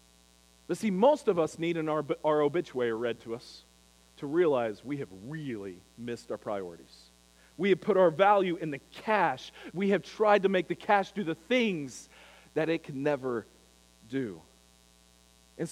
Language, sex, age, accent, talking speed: English, male, 40-59, American, 170 wpm